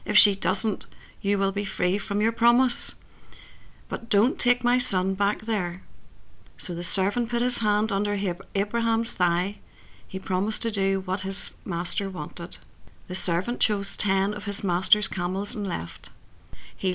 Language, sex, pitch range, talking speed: English, female, 180-220 Hz, 160 wpm